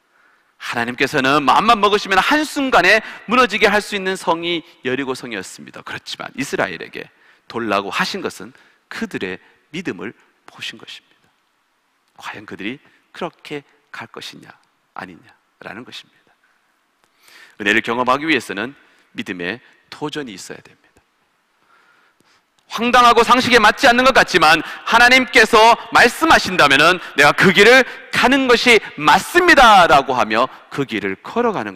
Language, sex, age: Korean, male, 40-59